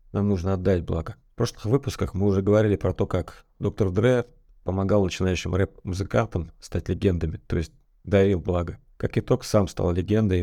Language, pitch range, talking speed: Russian, 90-105 Hz, 165 wpm